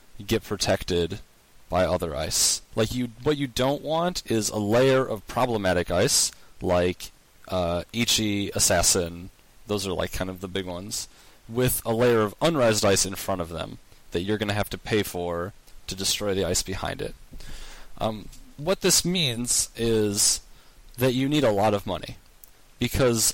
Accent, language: American, English